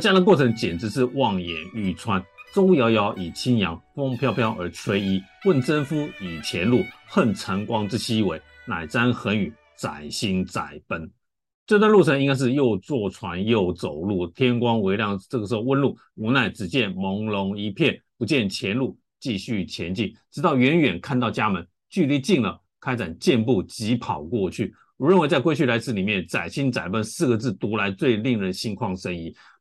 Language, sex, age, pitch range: Chinese, male, 50-69, 95-135 Hz